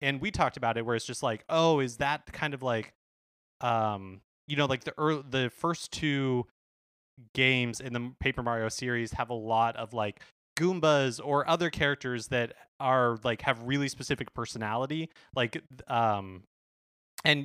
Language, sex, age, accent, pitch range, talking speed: English, male, 20-39, American, 120-145 Hz, 170 wpm